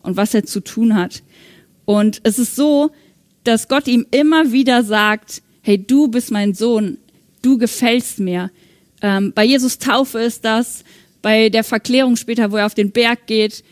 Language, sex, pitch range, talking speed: German, female, 200-245 Hz, 175 wpm